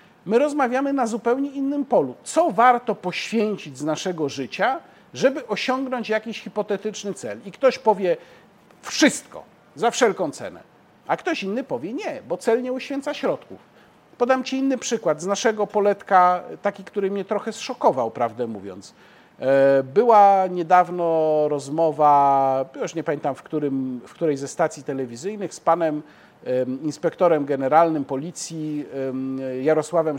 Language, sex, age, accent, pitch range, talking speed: Polish, male, 50-69, native, 150-225 Hz, 135 wpm